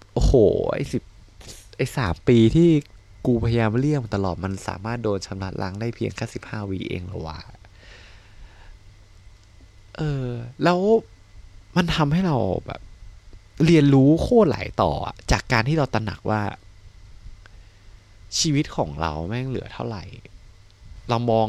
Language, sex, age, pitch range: Thai, male, 20-39, 95-120 Hz